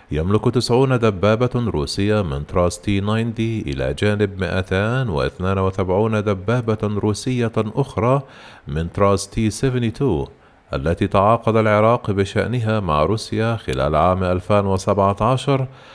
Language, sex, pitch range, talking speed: Arabic, male, 95-115 Hz, 95 wpm